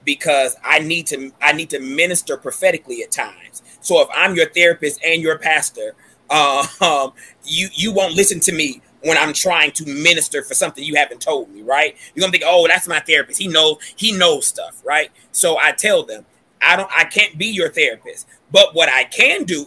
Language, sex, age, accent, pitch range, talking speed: English, male, 30-49, American, 170-245 Hz, 205 wpm